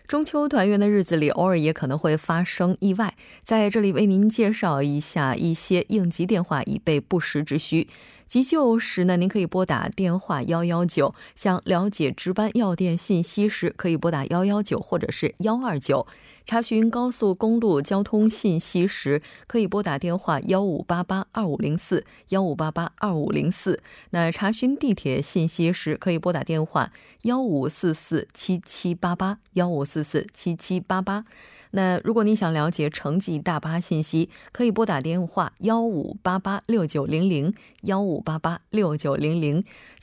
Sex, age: female, 20-39